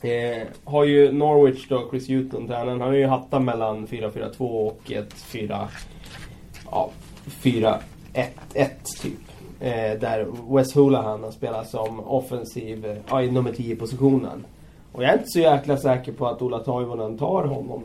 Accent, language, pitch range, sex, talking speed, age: native, Swedish, 110-135 Hz, male, 145 wpm, 30-49